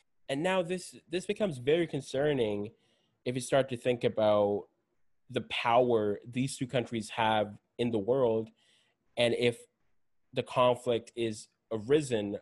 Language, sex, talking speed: English, male, 135 wpm